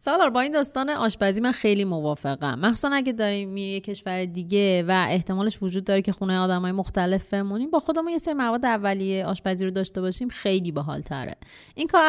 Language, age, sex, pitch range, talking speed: Persian, 30-49, female, 175-225 Hz, 195 wpm